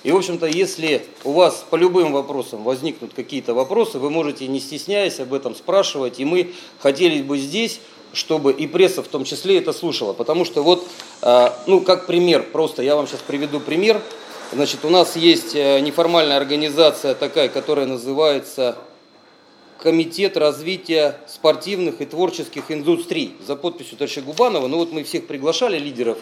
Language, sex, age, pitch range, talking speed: Russian, male, 40-59, 140-175 Hz, 160 wpm